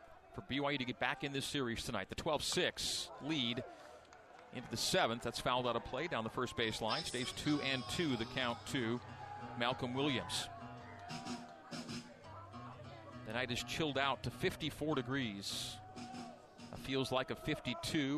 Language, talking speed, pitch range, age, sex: English, 155 wpm, 120-150 Hz, 40-59, male